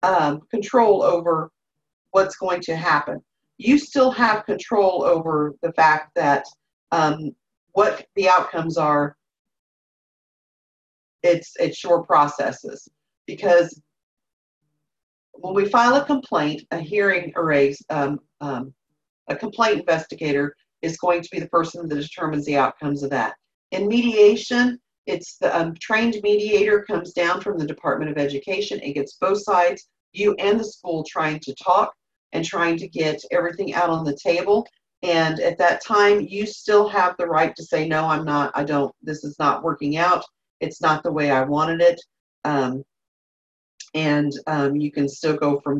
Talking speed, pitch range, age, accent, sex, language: 160 wpm, 150-195 Hz, 40-59, American, female, English